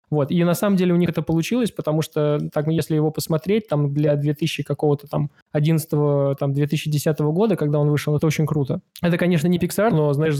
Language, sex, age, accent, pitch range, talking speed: Russian, male, 20-39, native, 150-170 Hz, 190 wpm